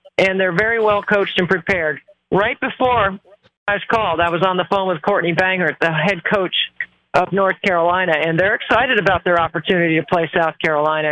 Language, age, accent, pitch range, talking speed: English, 50-69, American, 180-220 Hz, 195 wpm